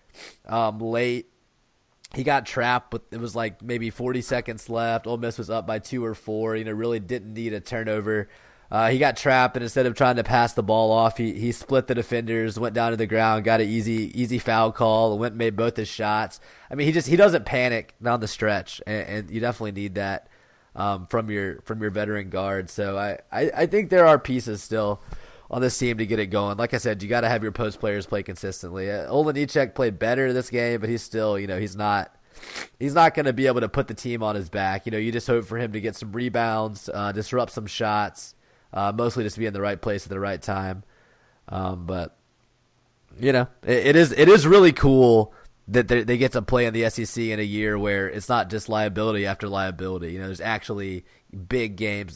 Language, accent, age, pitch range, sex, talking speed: English, American, 20-39, 105-120 Hz, male, 230 wpm